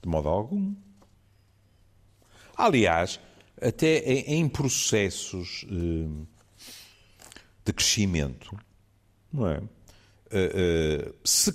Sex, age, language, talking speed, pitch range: male, 50-69, Portuguese, 60 wpm, 80-105 Hz